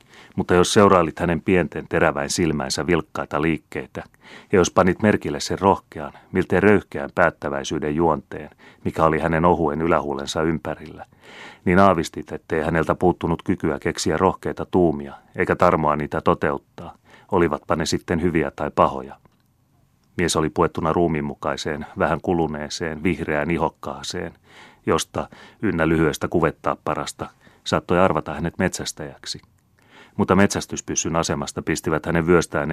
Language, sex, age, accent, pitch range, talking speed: Finnish, male, 30-49, native, 75-90 Hz, 125 wpm